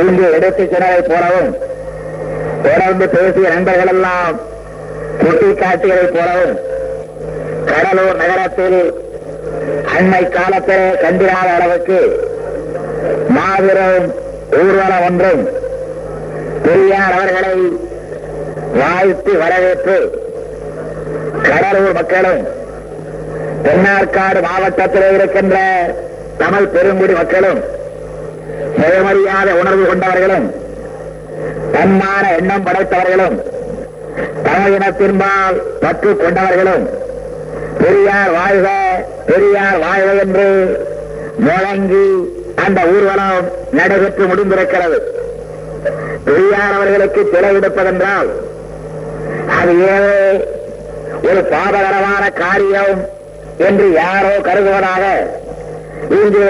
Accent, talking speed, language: native, 65 wpm, Tamil